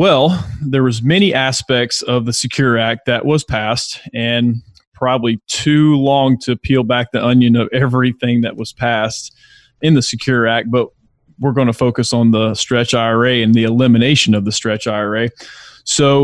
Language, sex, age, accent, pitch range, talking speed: English, male, 30-49, American, 115-135 Hz, 170 wpm